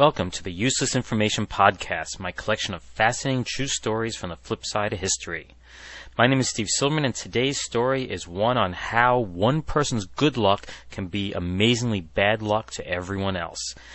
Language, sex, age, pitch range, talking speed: English, male, 30-49, 95-120 Hz, 180 wpm